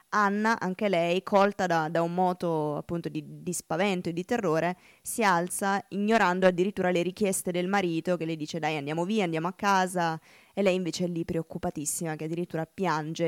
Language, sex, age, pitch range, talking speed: Italian, female, 20-39, 165-190 Hz, 185 wpm